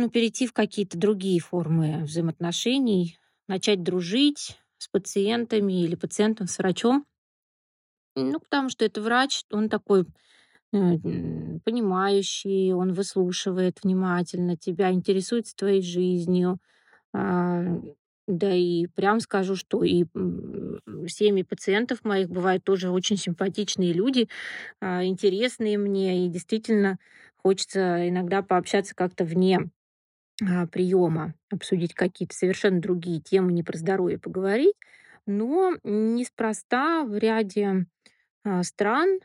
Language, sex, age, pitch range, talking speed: Russian, female, 20-39, 180-220 Hz, 105 wpm